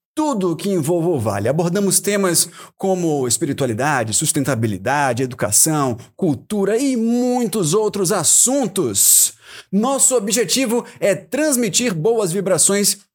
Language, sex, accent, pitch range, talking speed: Portuguese, male, Brazilian, 155-215 Hz, 105 wpm